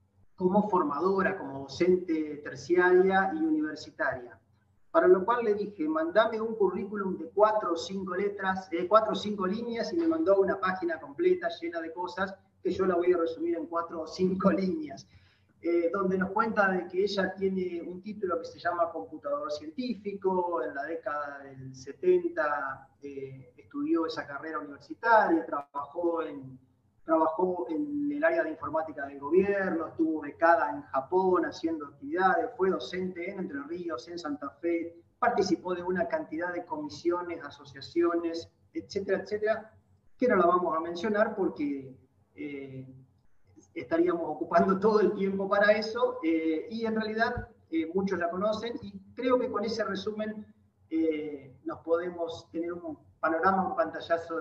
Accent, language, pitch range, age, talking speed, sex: Argentinian, Spanish, 155-205 Hz, 30-49, 155 wpm, male